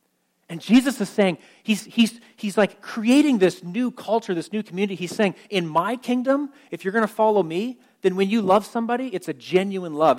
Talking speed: 205 wpm